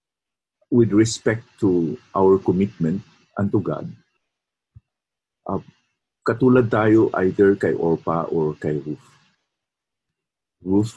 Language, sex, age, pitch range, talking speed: English, male, 50-69, 85-110 Hz, 100 wpm